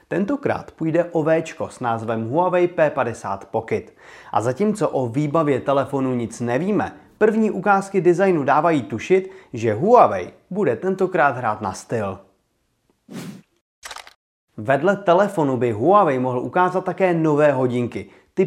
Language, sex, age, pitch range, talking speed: Czech, male, 30-49, 125-175 Hz, 125 wpm